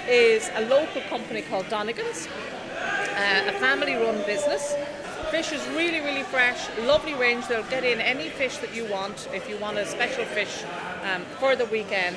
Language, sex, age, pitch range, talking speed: English, female, 40-59, 205-275 Hz, 175 wpm